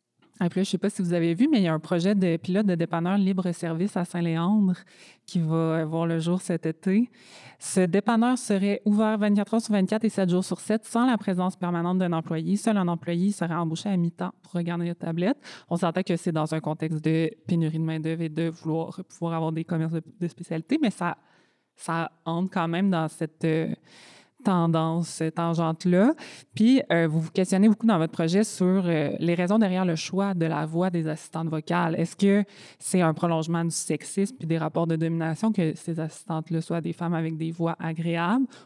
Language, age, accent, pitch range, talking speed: French, 20-39, Canadian, 165-190 Hz, 210 wpm